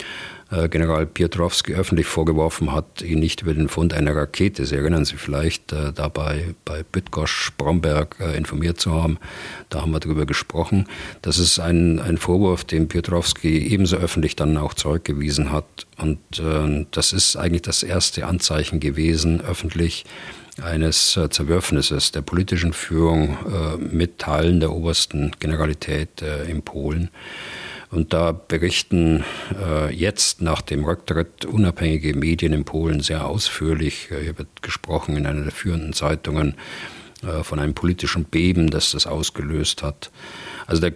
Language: German